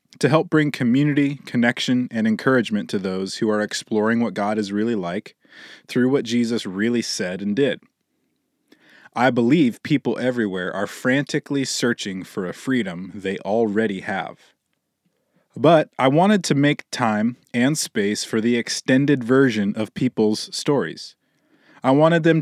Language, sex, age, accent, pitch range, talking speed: English, male, 20-39, American, 110-145 Hz, 145 wpm